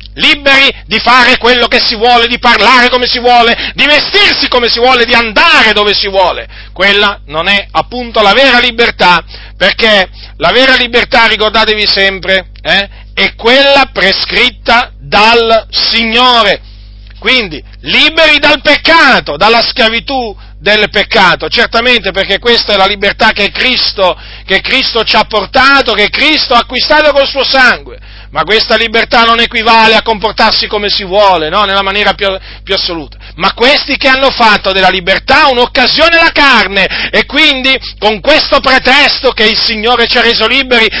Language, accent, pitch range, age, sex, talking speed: Italian, native, 195-265 Hz, 40-59, male, 155 wpm